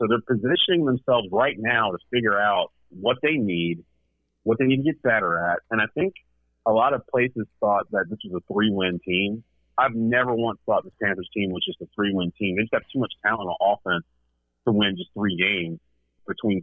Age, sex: 40-59, male